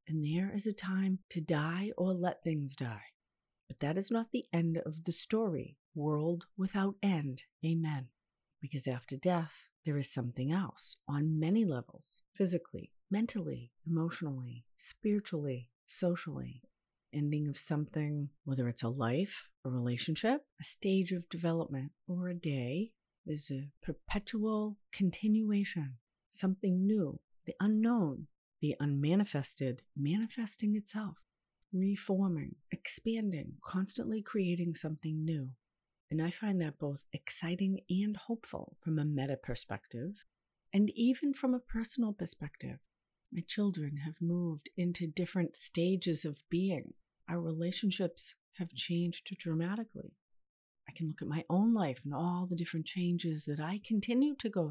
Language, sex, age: English, female, 50-69